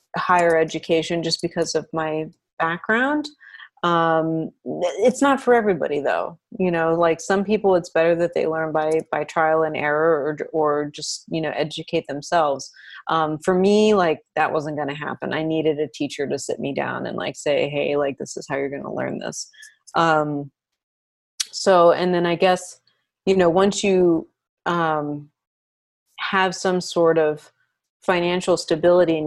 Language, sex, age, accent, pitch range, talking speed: English, female, 30-49, American, 150-175 Hz, 170 wpm